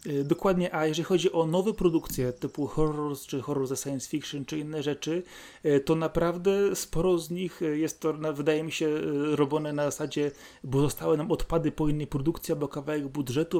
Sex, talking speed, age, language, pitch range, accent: male, 175 wpm, 30-49, Polish, 140-170 Hz, native